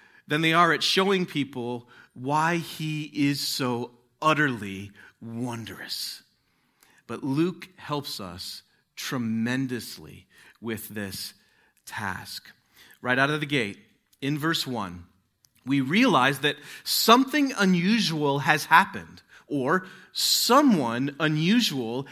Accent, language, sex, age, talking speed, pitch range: American, English, male, 40-59, 105 wpm, 115-170 Hz